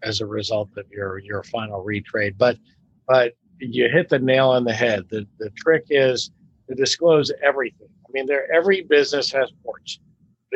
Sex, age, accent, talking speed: male, 50-69, American, 175 wpm